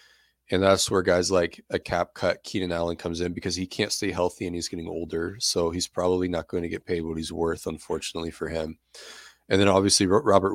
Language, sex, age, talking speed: English, male, 20-39, 220 wpm